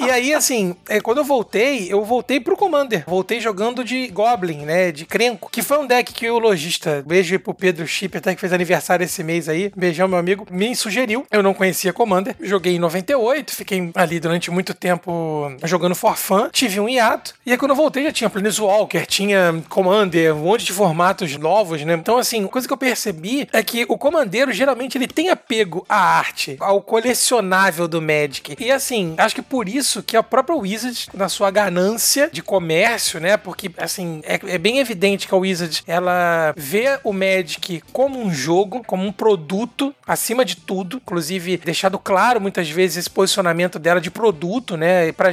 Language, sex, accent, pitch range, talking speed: Portuguese, male, Brazilian, 180-240 Hz, 195 wpm